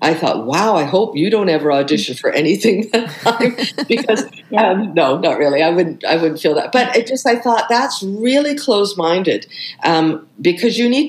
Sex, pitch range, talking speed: female, 160-225 Hz, 195 wpm